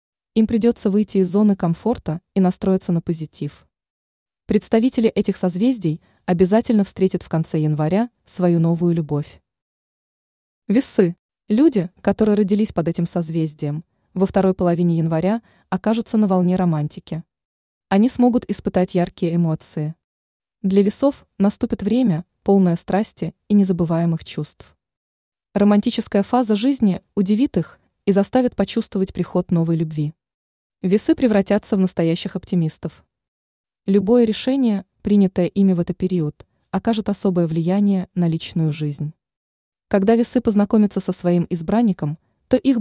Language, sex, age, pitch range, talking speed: Russian, female, 20-39, 170-215 Hz, 120 wpm